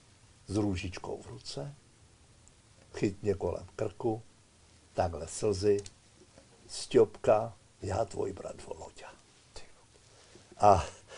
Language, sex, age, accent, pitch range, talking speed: Czech, male, 60-79, native, 110-155 Hz, 80 wpm